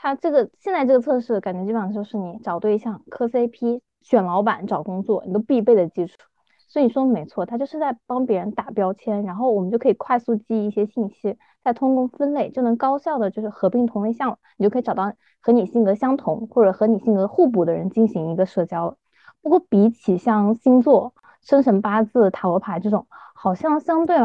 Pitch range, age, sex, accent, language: 205-255 Hz, 20-39, female, native, Chinese